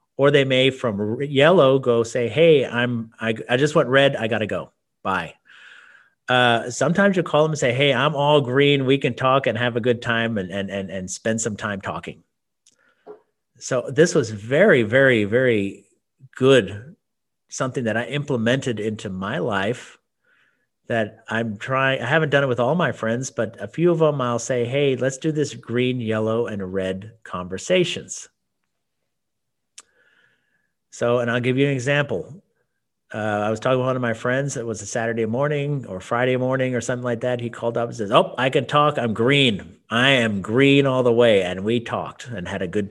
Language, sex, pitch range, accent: English, male, 110-135 Hz, American